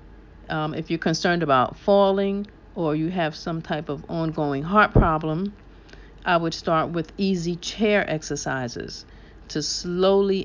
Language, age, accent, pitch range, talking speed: English, 50-69, American, 140-190 Hz, 140 wpm